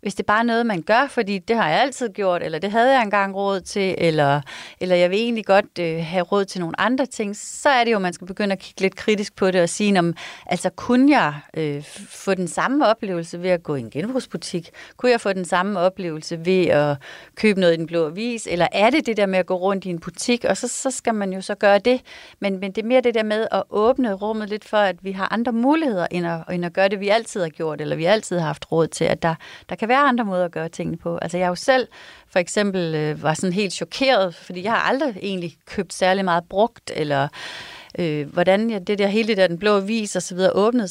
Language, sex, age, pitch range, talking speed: Danish, female, 30-49, 170-220 Hz, 265 wpm